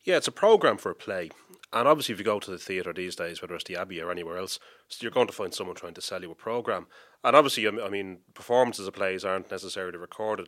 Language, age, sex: English, 30-49, male